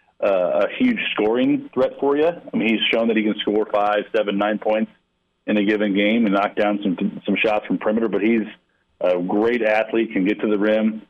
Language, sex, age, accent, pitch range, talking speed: English, male, 40-59, American, 100-110 Hz, 220 wpm